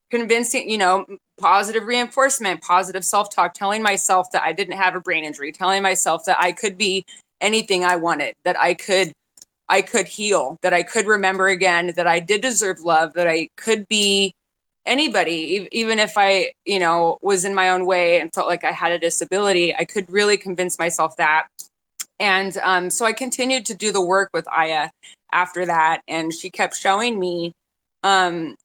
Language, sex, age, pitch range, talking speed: English, female, 20-39, 170-200 Hz, 185 wpm